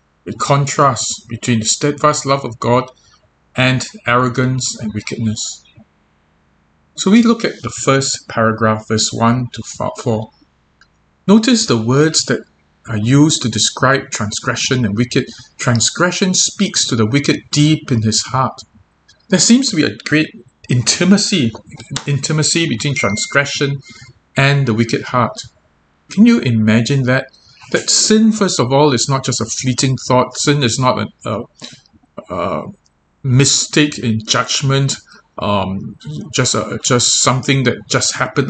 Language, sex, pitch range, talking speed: English, male, 115-145 Hz, 140 wpm